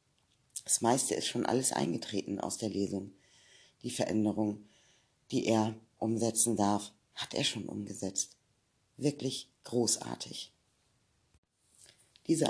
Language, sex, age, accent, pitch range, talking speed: German, female, 50-69, German, 105-135 Hz, 105 wpm